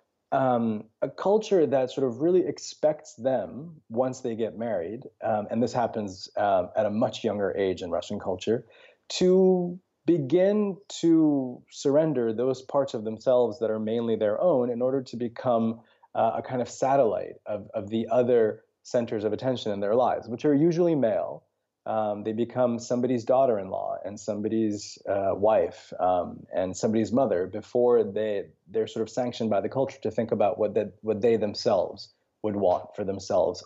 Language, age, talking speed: English, 20-39, 170 wpm